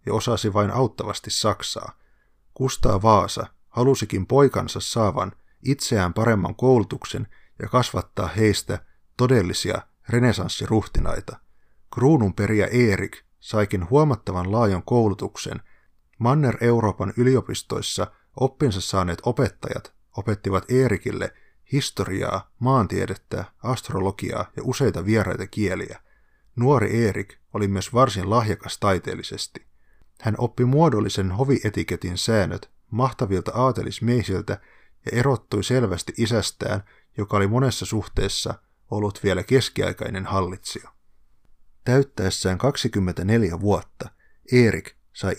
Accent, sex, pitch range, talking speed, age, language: native, male, 95-125 Hz, 90 wpm, 30-49, Finnish